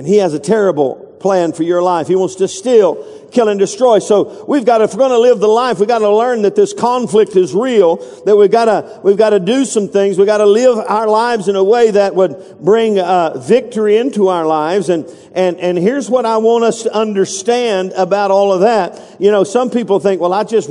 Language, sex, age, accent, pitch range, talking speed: English, male, 50-69, American, 190-235 Hz, 240 wpm